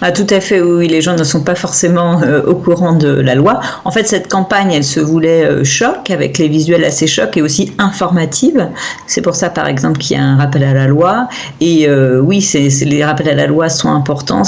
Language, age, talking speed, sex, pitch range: French, 40-59, 245 wpm, female, 145-180 Hz